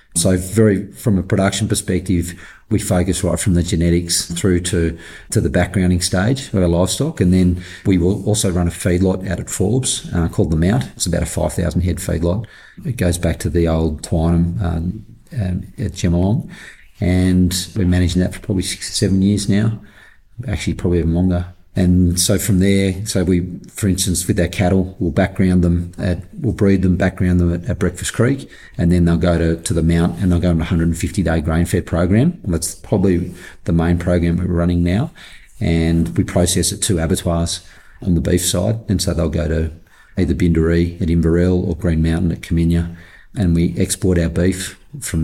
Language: English